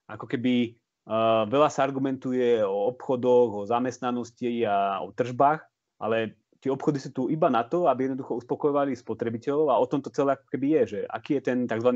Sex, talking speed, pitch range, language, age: male, 190 wpm, 115-130 Hz, Slovak, 30-49